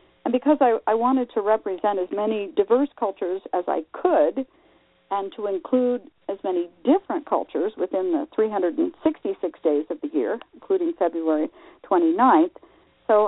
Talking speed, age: 145 wpm, 50-69